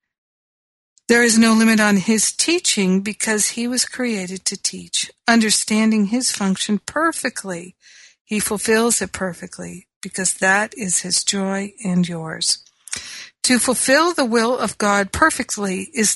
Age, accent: 60-79, American